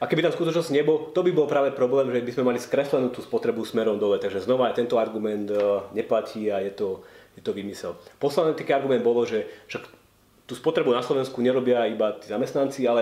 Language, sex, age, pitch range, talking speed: Slovak, male, 30-49, 110-135 Hz, 205 wpm